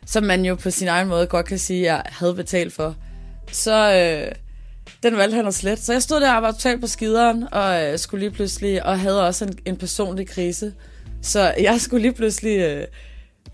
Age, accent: 30-49, native